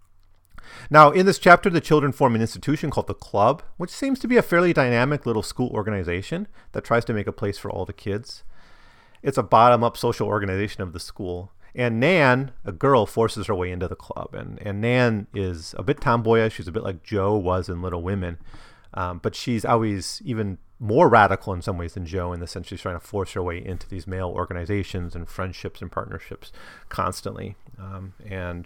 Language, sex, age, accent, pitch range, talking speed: English, male, 30-49, American, 90-120 Hz, 205 wpm